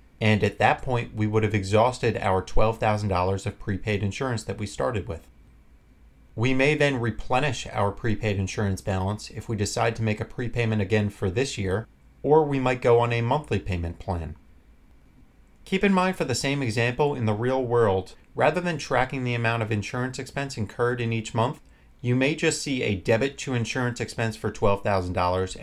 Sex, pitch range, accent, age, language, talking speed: male, 100-125 Hz, American, 30-49, English, 185 wpm